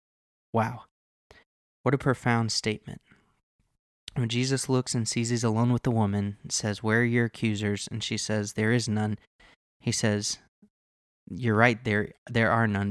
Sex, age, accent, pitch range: male, 20-39, American, 105-125 Hz